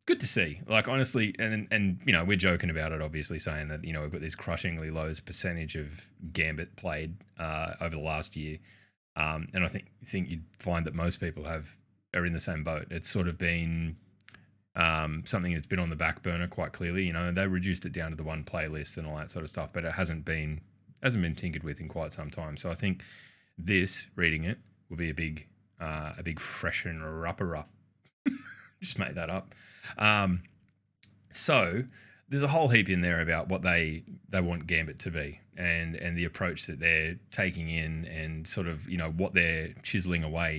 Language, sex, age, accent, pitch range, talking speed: English, male, 20-39, Australian, 80-95 Hz, 210 wpm